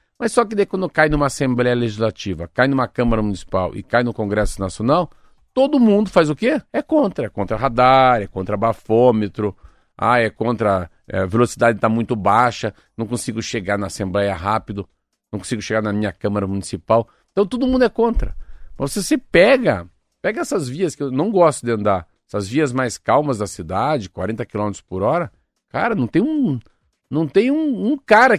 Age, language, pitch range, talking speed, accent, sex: 50-69, Portuguese, 105-150 Hz, 190 wpm, Brazilian, male